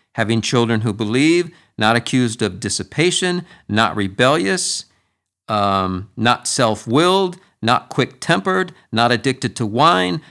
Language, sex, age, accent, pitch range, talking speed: English, male, 50-69, American, 100-130 Hz, 110 wpm